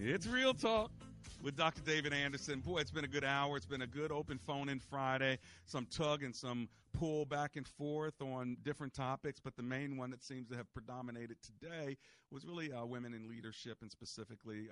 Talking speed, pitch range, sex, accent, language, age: 200 wpm, 100-125 Hz, male, American, English, 40-59